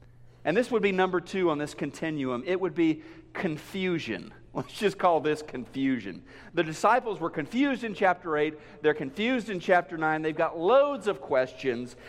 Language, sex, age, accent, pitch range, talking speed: English, male, 50-69, American, 155-255 Hz, 175 wpm